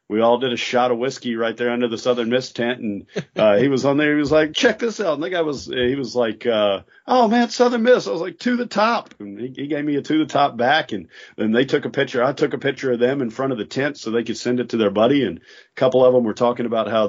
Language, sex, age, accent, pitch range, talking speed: English, male, 40-59, American, 100-125 Hz, 305 wpm